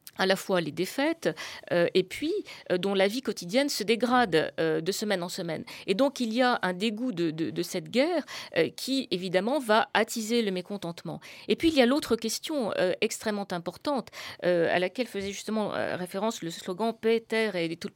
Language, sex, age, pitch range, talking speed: French, female, 40-59, 180-255 Hz, 215 wpm